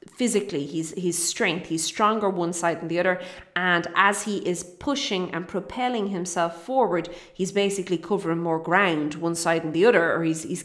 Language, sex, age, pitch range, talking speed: English, female, 30-49, 175-225 Hz, 180 wpm